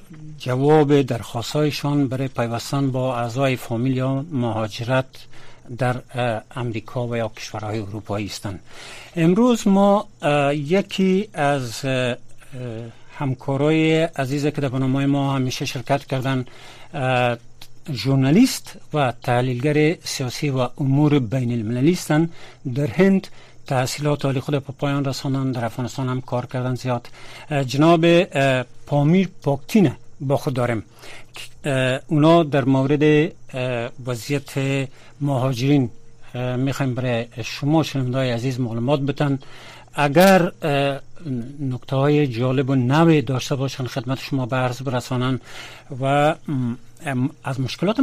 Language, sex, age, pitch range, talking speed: Persian, male, 60-79, 125-145 Hz, 105 wpm